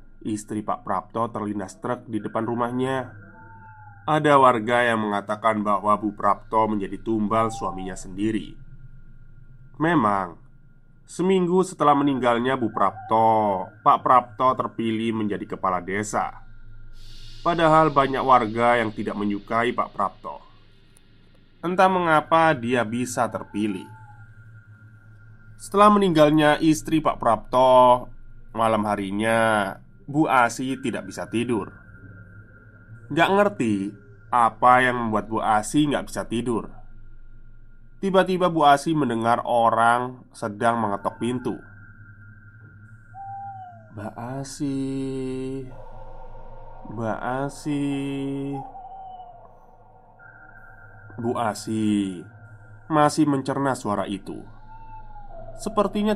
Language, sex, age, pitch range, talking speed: Indonesian, male, 20-39, 110-135 Hz, 90 wpm